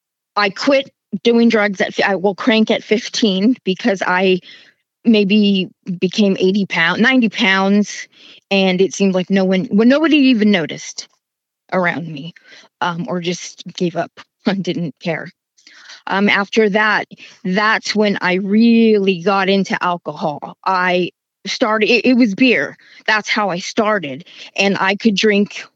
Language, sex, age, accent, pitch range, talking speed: English, female, 20-39, American, 190-220 Hz, 145 wpm